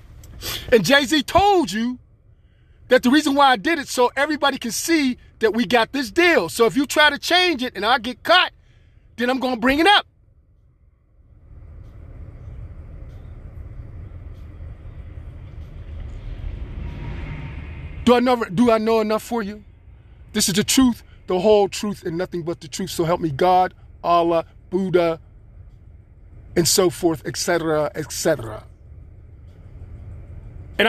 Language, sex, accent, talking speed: English, male, American, 135 wpm